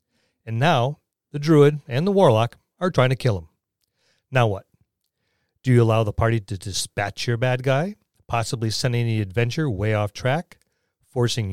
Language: English